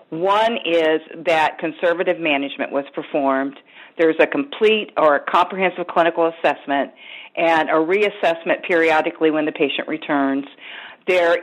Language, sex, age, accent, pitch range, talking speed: English, female, 50-69, American, 160-185 Hz, 125 wpm